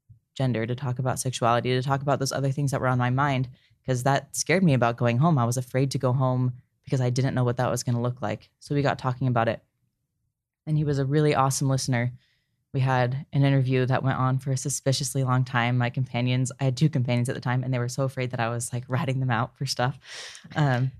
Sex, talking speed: female, 255 wpm